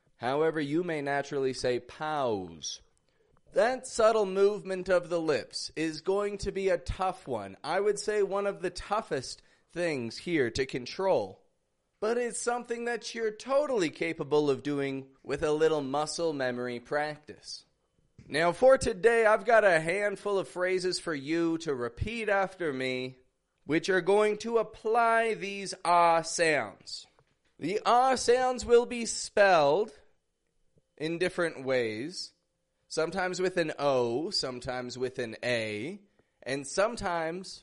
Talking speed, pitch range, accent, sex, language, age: 140 wpm, 150-210 Hz, American, male, English, 30-49